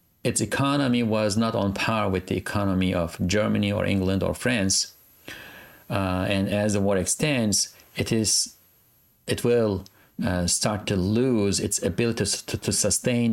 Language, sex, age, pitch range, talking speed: English, male, 40-59, 95-115 Hz, 160 wpm